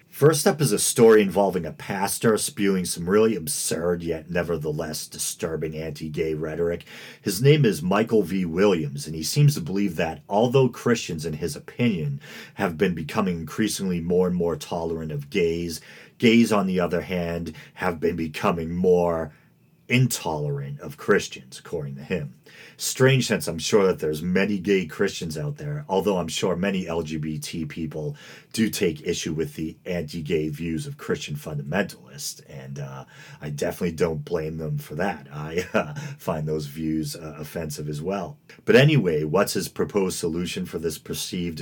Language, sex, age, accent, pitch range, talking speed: English, male, 40-59, American, 80-110 Hz, 165 wpm